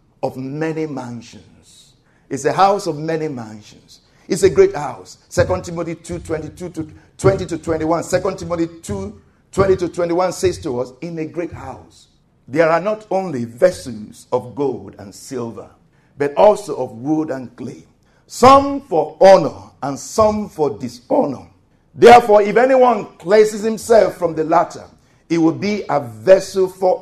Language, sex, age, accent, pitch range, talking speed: English, male, 50-69, Nigerian, 125-190 Hz, 150 wpm